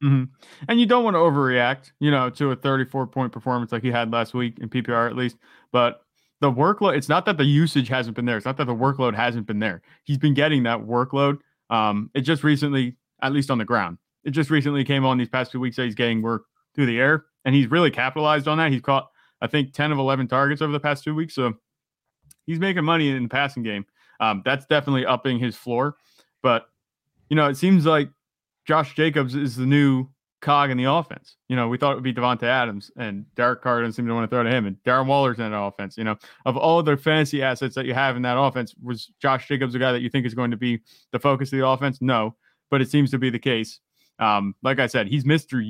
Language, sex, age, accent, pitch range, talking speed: English, male, 30-49, American, 120-140 Hz, 250 wpm